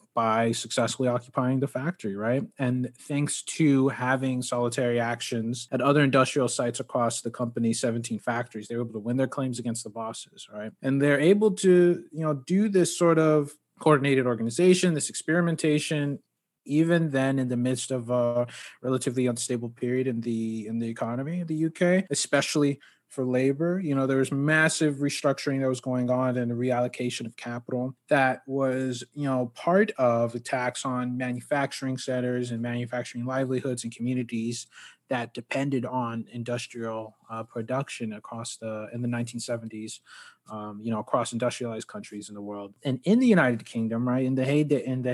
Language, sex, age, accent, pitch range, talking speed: English, male, 20-39, American, 120-145 Hz, 170 wpm